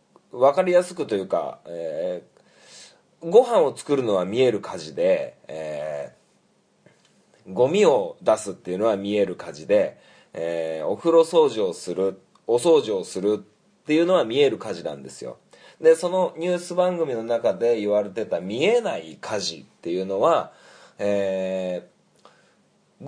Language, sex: Japanese, male